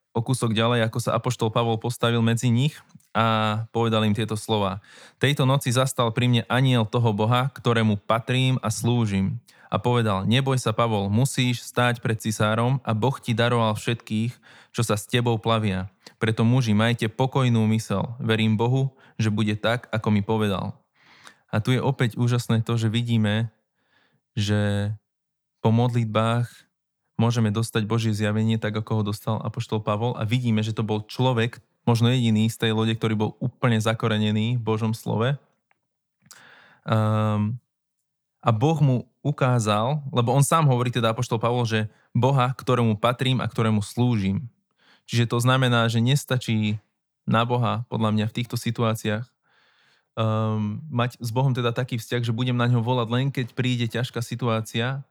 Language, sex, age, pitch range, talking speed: Slovak, male, 20-39, 110-125 Hz, 160 wpm